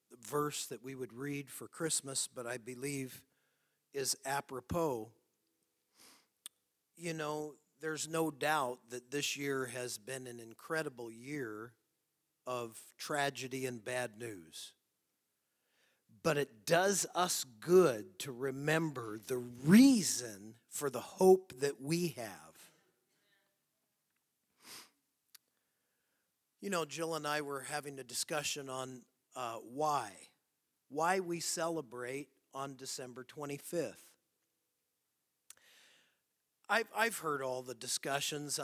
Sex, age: male, 40-59